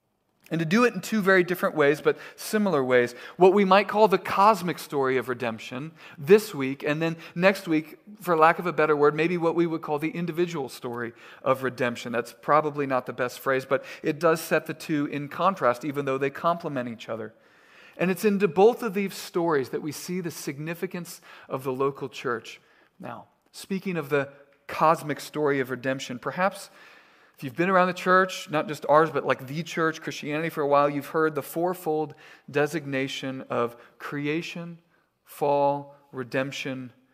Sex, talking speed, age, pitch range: male, 185 wpm, 40-59, 140-180 Hz